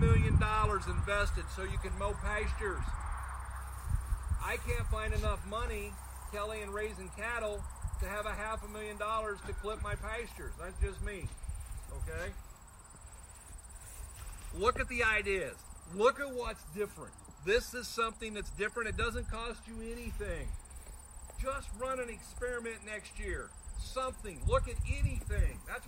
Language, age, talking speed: English, 50-69, 140 wpm